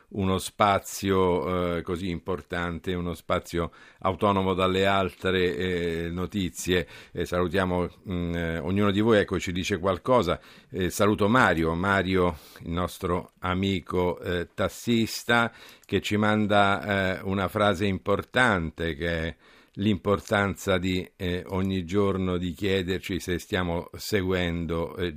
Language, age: Italian, 50-69